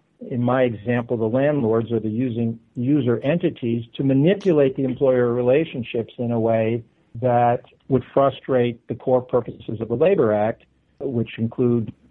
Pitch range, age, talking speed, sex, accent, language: 120-150 Hz, 60-79, 150 wpm, male, American, English